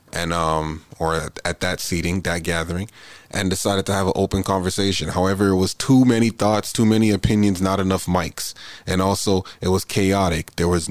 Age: 30-49